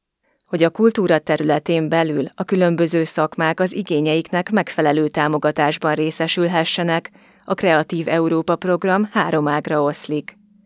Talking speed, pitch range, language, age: 115 wpm, 150-170 Hz, Hungarian, 30-49